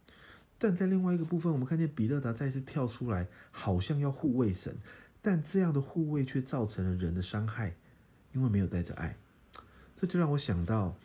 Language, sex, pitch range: Chinese, male, 95-125 Hz